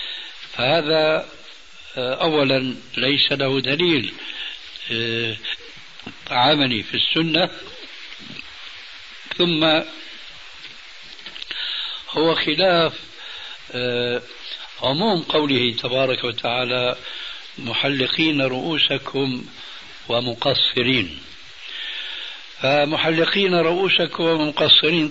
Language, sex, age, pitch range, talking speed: Arabic, male, 60-79, 125-165 Hz, 50 wpm